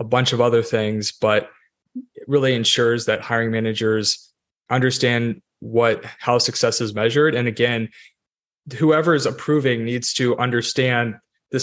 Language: English